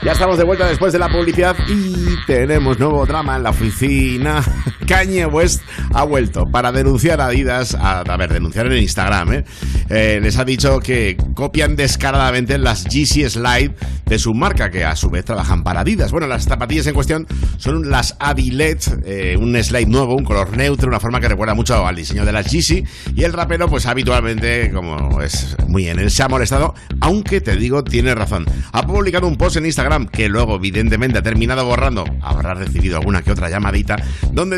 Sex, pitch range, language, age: male, 85-130 Hz, Spanish, 60-79